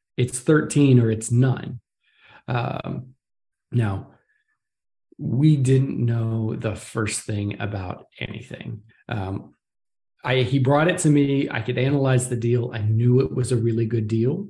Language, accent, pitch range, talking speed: English, American, 115-130 Hz, 140 wpm